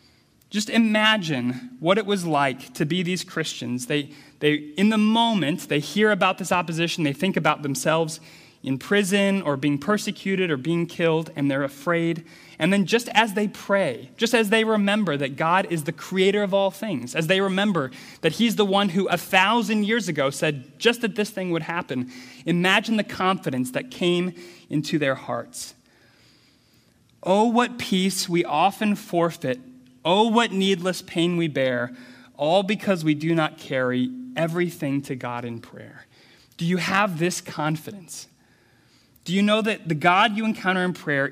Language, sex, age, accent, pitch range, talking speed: English, male, 30-49, American, 145-205 Hz, 170 wpm